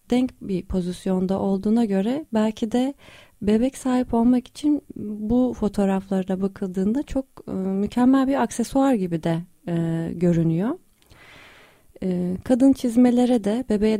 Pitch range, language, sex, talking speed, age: 185-240 Hz, Turkish, female, 105 wpm, 30-49